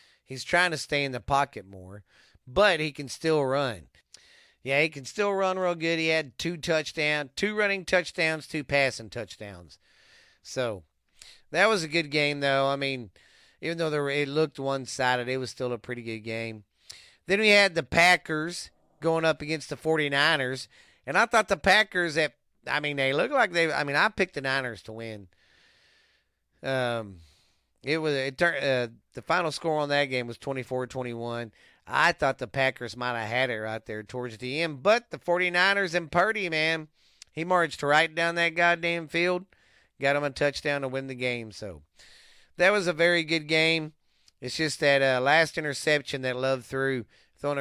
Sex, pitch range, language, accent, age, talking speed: male, 125-165 Hz, English, American, 40-59, 185 wpm